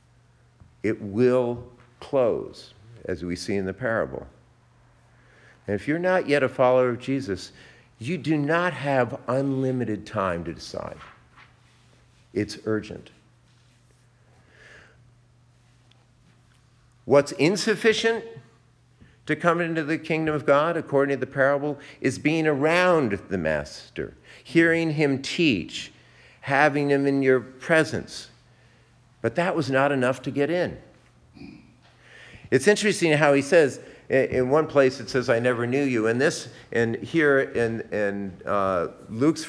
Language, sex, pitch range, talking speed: English, male, 110-140 Hz, 130 wpm